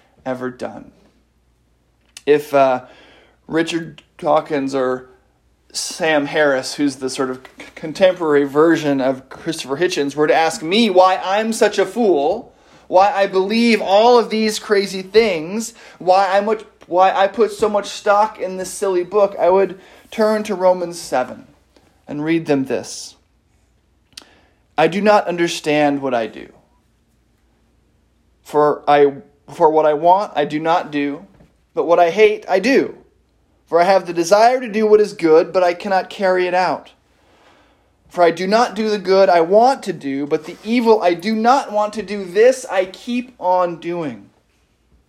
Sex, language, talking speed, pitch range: male, English, 160 wpm, 140-200 Hz